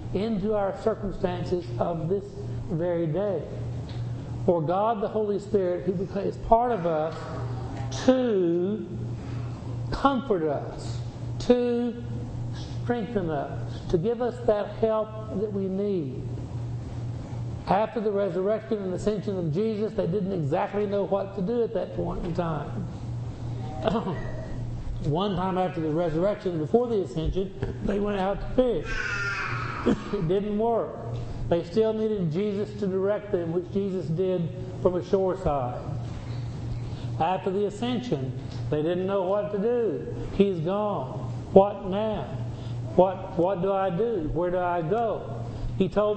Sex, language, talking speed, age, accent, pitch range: male, English, 135 wpm, 60-79, American, 120-205 Hz